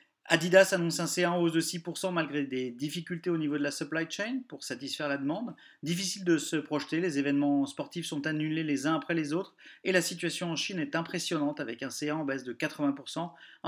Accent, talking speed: French, 215 wpm